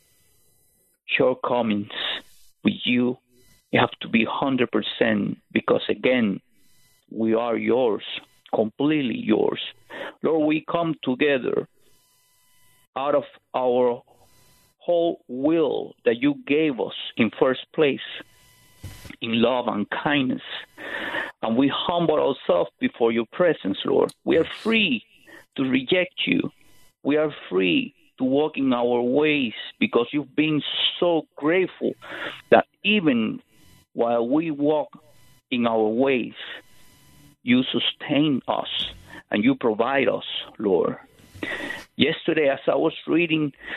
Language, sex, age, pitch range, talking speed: English, male, 50-69, 125-180 Hz, 115 wpm